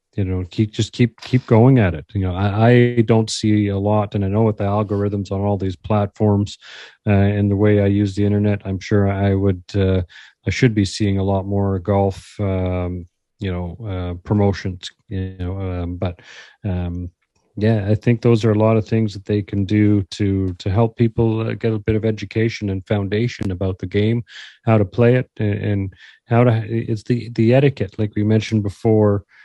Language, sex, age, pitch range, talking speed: English, male, 40-59, 95-110 Hz, 205 wpm